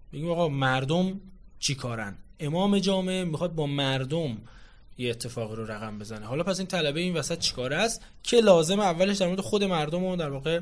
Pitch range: 130-190 Hz